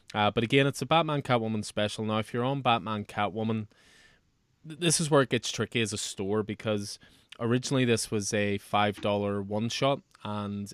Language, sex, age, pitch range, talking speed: English, male, 20-39, 100-120 Hz, 180 wpm